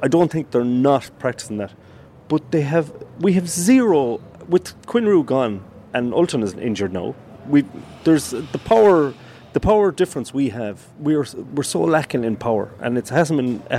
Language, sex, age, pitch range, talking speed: English, male, 30-49, 115-160 Hz, 185 wpm